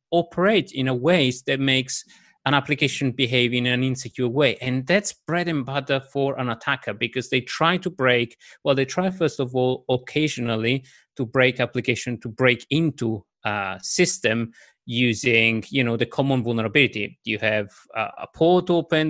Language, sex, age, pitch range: English, male, 30-49, 120-150 Hz